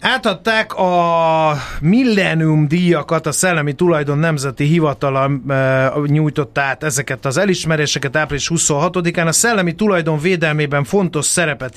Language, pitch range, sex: Hungarian, 140-170 Hz, male